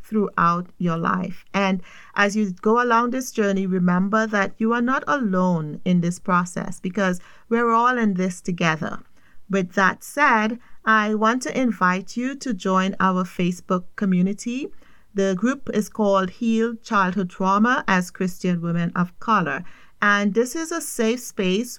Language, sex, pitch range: English, female, 185-230 Hz